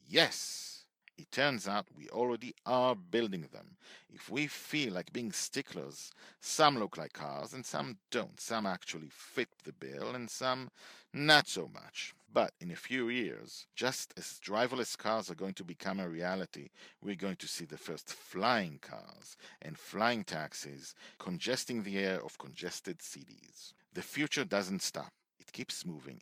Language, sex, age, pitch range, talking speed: English, male, 50-69, 95-140 Hz, 165 wpm